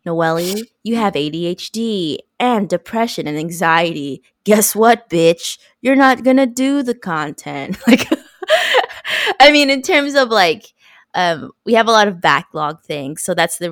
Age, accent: 20-39, American